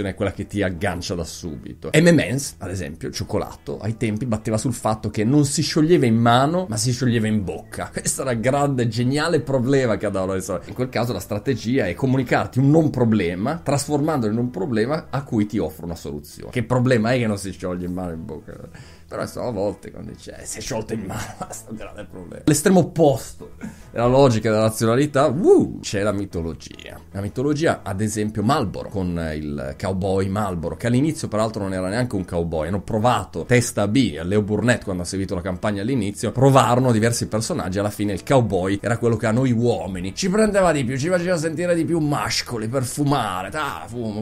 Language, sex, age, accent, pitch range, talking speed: Italian, male, 30-49, native, 100-135 Hz, 205 wpm